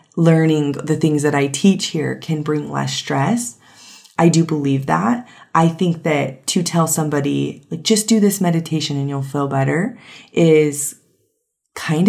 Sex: female